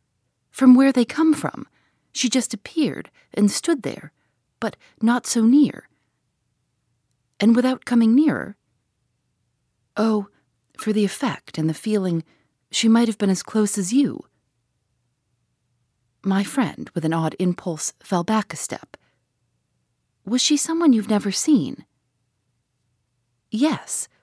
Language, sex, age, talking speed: English, female, 30-49, 125 wpm